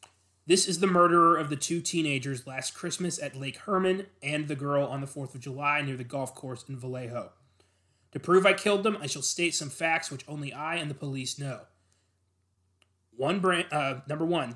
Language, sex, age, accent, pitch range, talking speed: English, male, 20-39, American, 130-160 Hz, 200 wpm